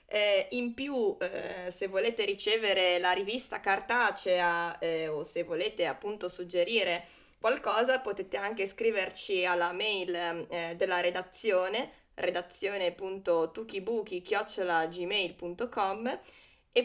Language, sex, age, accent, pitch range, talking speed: Italian, female, 20-39, native, 180-230 Hz, 100 wpm